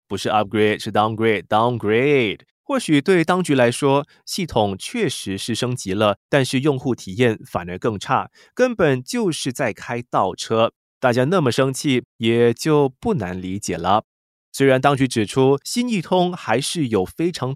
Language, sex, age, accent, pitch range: Chinese, male, 20-39, native, 110-165 Hz